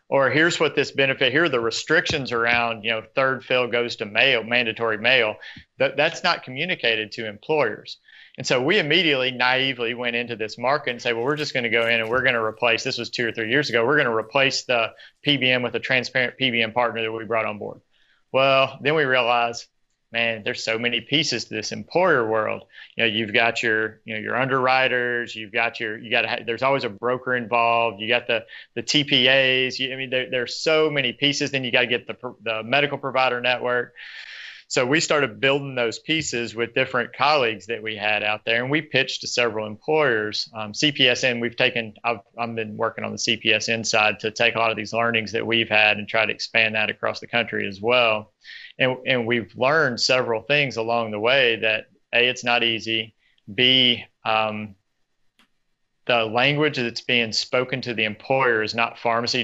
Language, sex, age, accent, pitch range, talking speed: English, male, 40-59, American, 110-130 Hz, 205 wpm